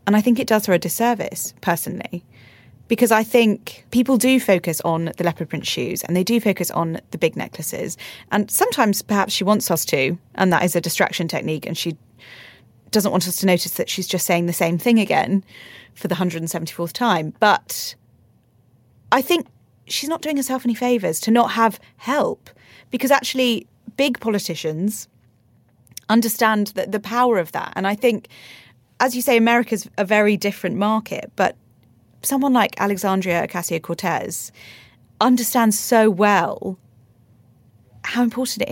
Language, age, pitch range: English, 30-49, 165-220 Hz